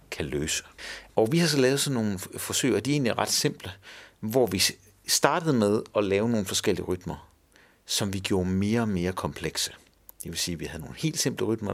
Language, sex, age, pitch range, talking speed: Danish, male, 60-79, 90-125 Hz, 215 wpm